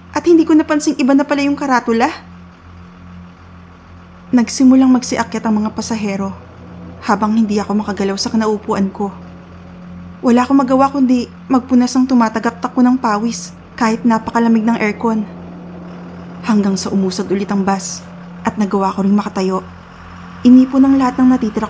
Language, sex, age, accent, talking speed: Filipino, female, 20-39, native, 140 wpm